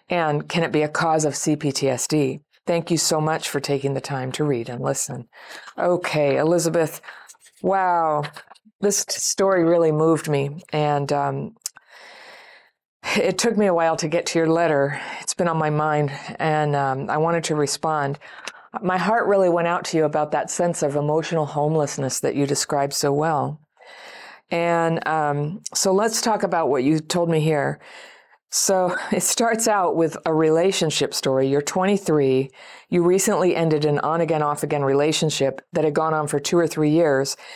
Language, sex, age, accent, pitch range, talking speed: English, female, 50-69, American, 150-180 Hz, 170 wpm